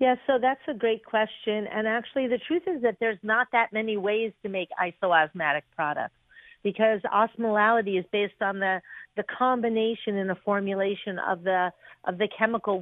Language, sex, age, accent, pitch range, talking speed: English, female, 50-69, American, 185-225 Hz, 180 wpm